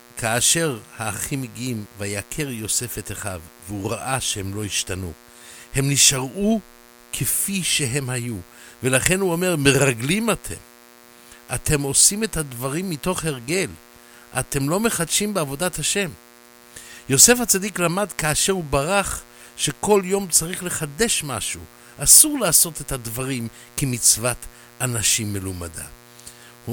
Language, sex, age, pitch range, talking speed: English, male, 60-79, 115-145 Hz, 115 wpm